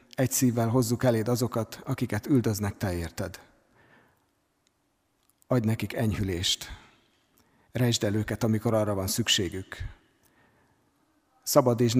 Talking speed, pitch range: 100 wpm, 105-125 Hz